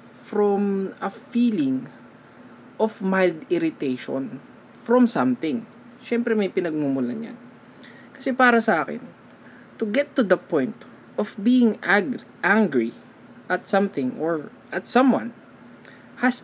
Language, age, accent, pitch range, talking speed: Filipino, 20-39, native, 155-240 Hz, 115 wpm